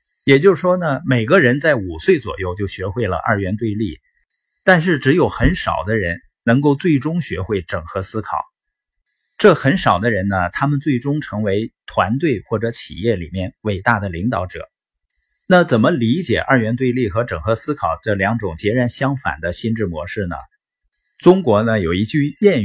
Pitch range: 100-145 Hz